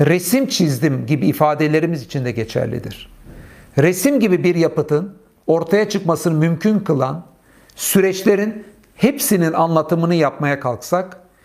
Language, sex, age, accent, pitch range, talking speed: Turkish, male, 60-79, native, 145-190 Hz, 105 wpm